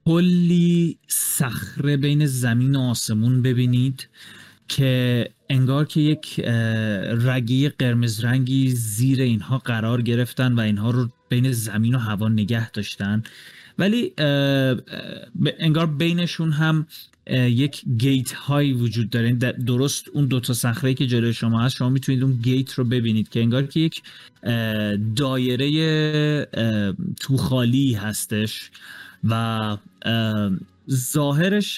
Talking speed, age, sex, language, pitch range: 110 wpm, 30-49, male, Persian, 120-145 Hz